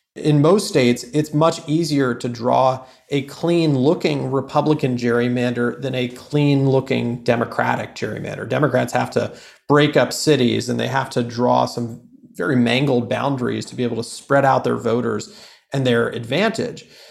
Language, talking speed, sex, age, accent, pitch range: English, 150 wpm, male, 40-59, American, 125-160 Hz